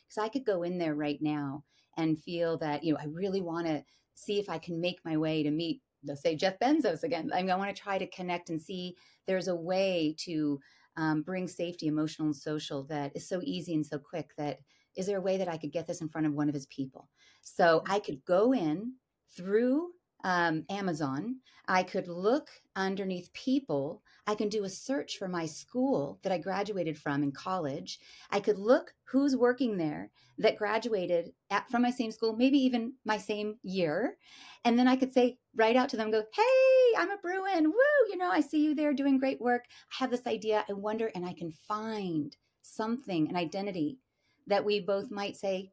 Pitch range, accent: 160-230 Hz, American